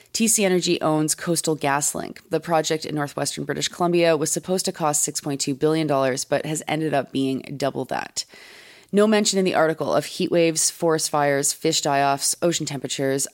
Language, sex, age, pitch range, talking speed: English, female, 30-49, 140-175 Hz, 170 wpm